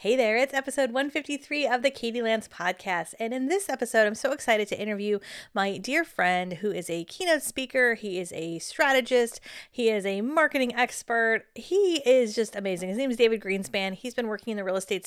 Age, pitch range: 30-49, 190-255 Hz